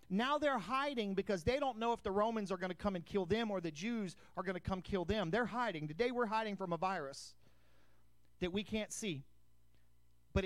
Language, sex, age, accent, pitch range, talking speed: English, male, 40-59, American, 175-245 Hz, 225 wpm